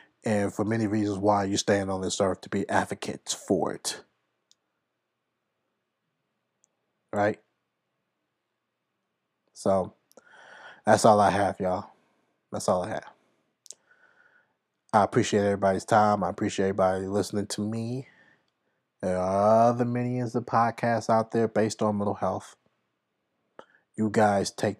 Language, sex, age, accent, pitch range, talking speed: English, male, 20-39, American, 100-110 Hz, 125 wpm